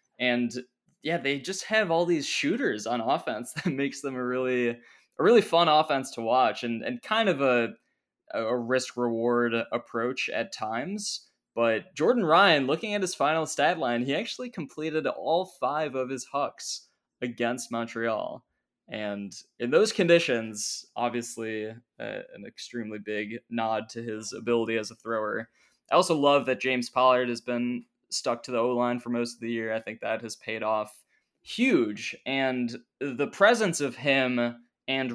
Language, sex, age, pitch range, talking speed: English, male, 20-39, 120-155 Hz, 165 wpm